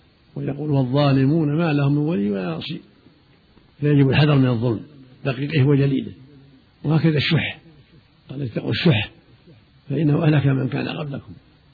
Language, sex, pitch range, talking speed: Arabic, male, 135-155 Hz, 125 wpm